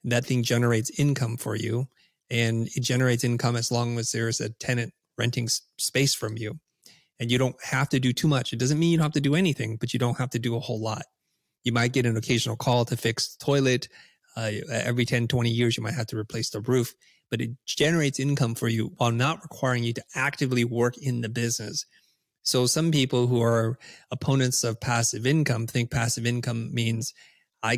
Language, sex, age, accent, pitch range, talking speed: English, male, 30-49, American, 115-130 Hz, 210 wpm